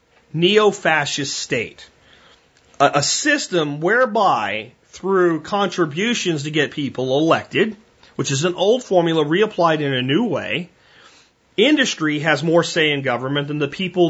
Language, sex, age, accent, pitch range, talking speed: Danish, male, 30-49, American, 135-180 Hz, 130 wpm